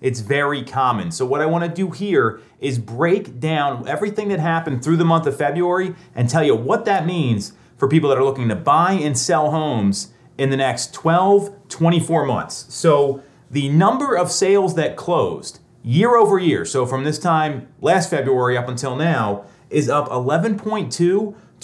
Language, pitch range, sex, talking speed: English, 135-195 Hz, male, 175 wpm